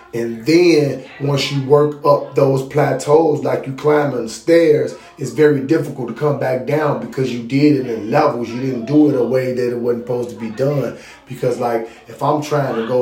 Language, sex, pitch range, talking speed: English, male, 125-145 Hz, 205 wpm